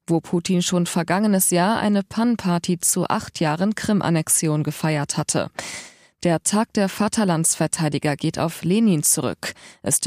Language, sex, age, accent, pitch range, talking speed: German, female, 20-39, German, 165-210 Hz, 135 wpm